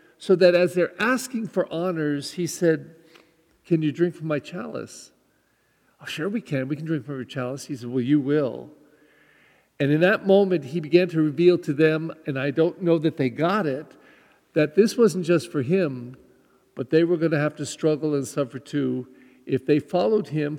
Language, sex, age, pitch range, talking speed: English, male, 50-69, 135-175 Hz, 200 wpm